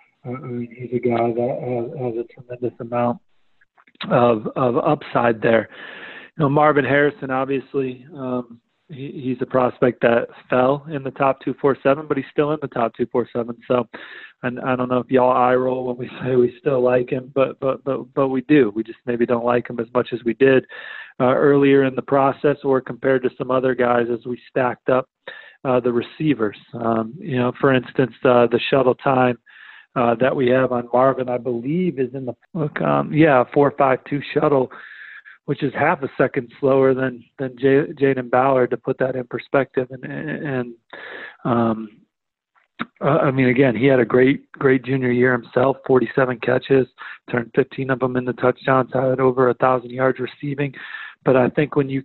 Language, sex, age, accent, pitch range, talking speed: English, male, 40-59, American, 125-135 Hz, 195 wpm